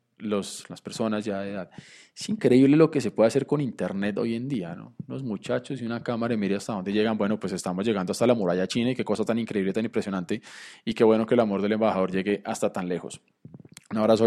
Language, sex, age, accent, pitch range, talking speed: Spanish, male, 20-39, Colombian, 105-130 Hz, 245 wpm